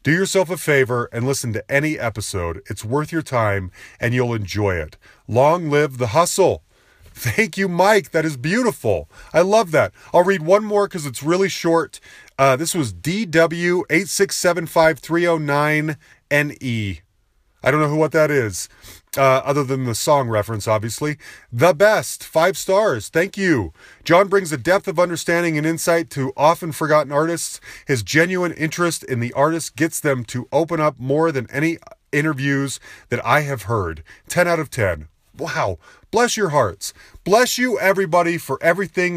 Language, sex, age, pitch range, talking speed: English, male, 30-49, 130-175 Hz, 160 wpm